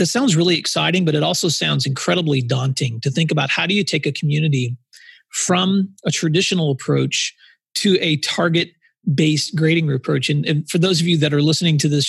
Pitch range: 145-175 Hz